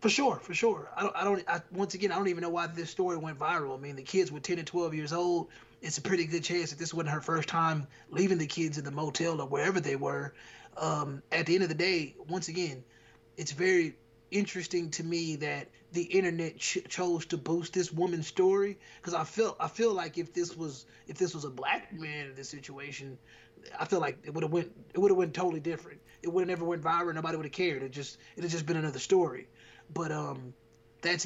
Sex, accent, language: male, American, English